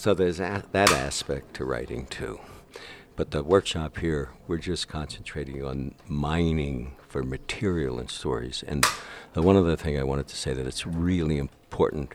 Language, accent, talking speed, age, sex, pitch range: English, American, 160 wpm, 60-79, male, 70-80 Hz